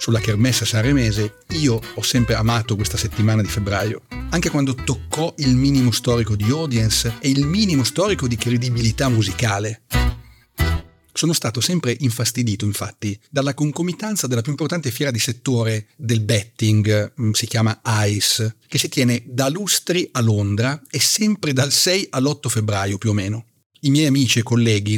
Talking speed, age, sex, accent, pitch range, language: 155 wpm, 40-59, male, native, 110-135 Hz, Italian